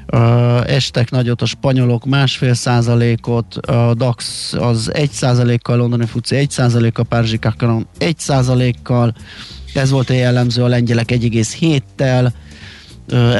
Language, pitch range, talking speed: Hungarian, 120-140 Hz, 120 wpm